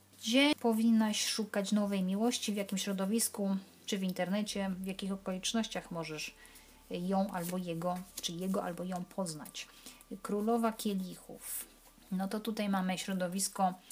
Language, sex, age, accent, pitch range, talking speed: Polish, female, 30-49, native, 180-215 Hz, 130 wpm